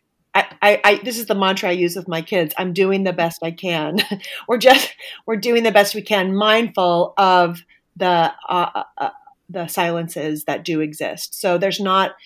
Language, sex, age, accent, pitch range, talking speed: English, female, 30-49, American, 155-185 Hz, 190 wpm